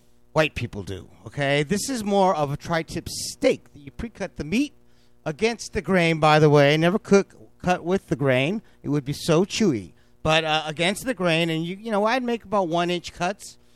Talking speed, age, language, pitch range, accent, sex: 205 wpm, 50-69, English, 130-190 Hz, American, male